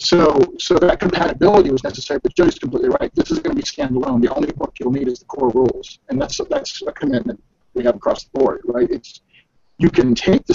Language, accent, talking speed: English, American, 240 wpm